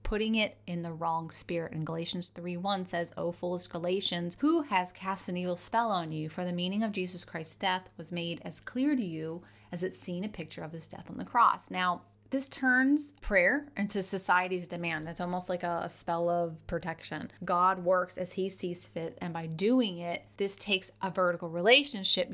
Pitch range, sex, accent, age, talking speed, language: 170-205 Hz, female, American, 30-49, 200 wpm, English